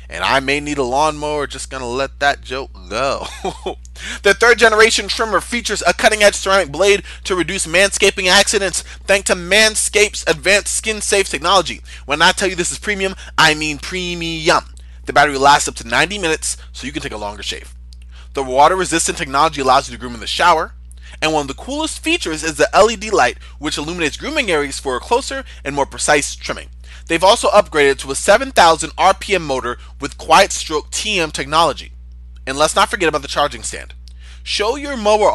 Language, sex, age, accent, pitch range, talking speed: English, male, 20-39, American, 120-195 Hz, 190 wpm